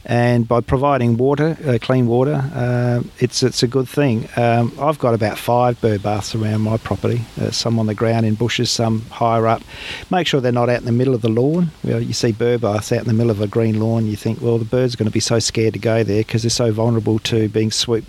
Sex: male